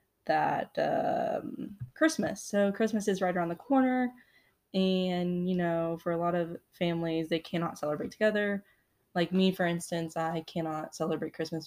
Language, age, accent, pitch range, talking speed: English, 10-29, American, 155-190 Hz, 155 wpm